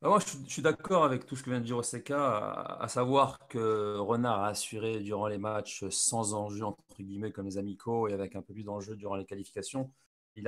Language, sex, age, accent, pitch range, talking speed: French, male, 30-49, French, 110-130 Hz, 225 wpm